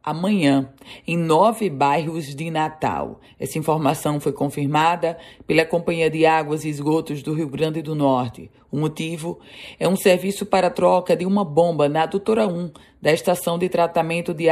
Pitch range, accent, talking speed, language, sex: 145-175 Hz, Brazilian, 160 wpm, Portuguese, female